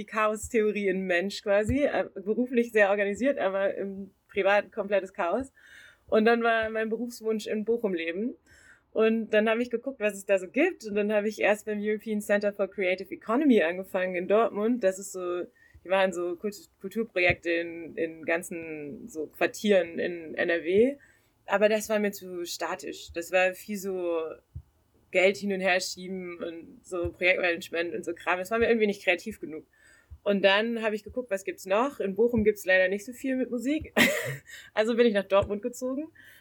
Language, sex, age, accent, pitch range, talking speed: German, female, 20-39, German, 185-220 Hz, 185 wpm